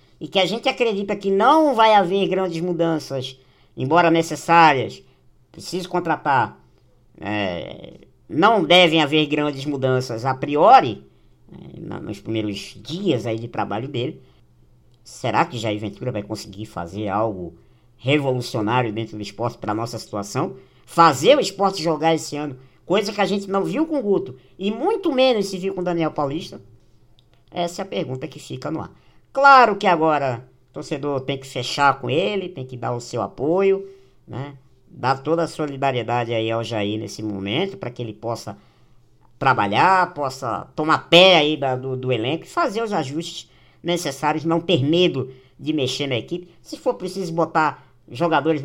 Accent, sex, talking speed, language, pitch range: Brazilian, male, 160 wpm, Portuguese, 125-180 Hz